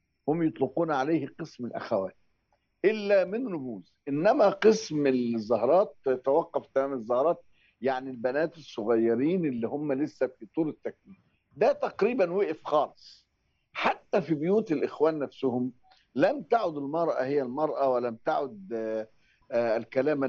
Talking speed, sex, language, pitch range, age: 120 wpm, male, Arabic, 125-165 Hz, 50-69